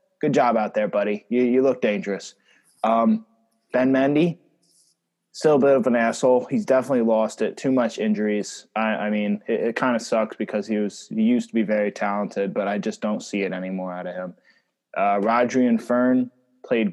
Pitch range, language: 110-130 Hz, English